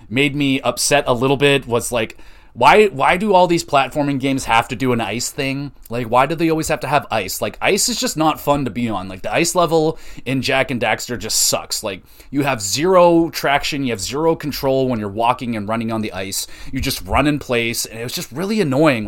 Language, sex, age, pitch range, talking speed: English, male, 30-49, 115-150 Hz, 240 wpm